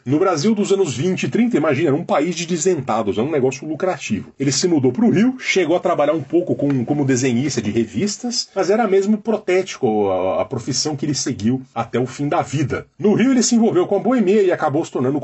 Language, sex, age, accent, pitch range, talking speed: Portuguese, male, 40-59, Brazilian, 120-190 Hz, 235 wpm